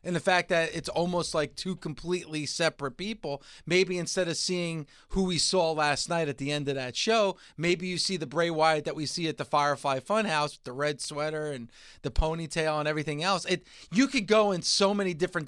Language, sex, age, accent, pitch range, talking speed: English, male, 30-49, American, 145-180 Hz, 220 wpm